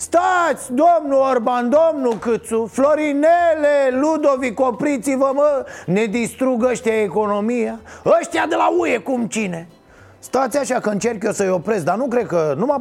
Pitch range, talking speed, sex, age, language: 195-270 Hz, 155 wpm, male, 30-49, Romanian